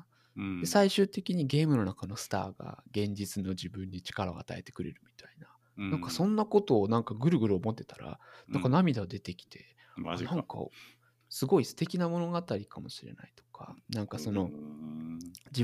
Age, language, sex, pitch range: 20-39, Japanese, male, 100-140 Hz